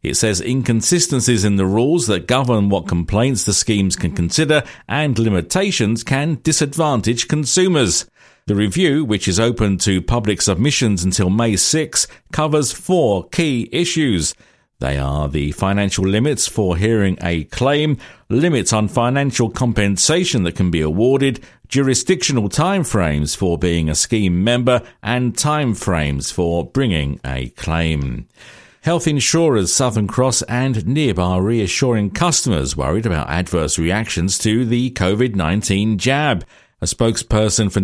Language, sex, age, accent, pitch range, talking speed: English, male, 50-69, British, 95-130 Hz, 135 wpm